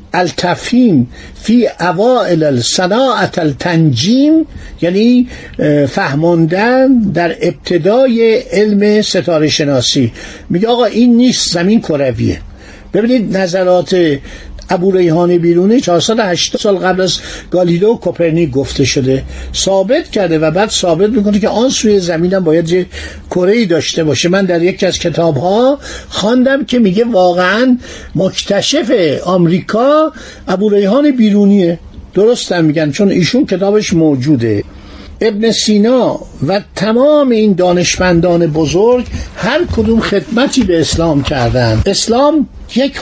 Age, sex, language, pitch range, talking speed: 60-79, male, Persian, 170-230 Hz, 115 wpm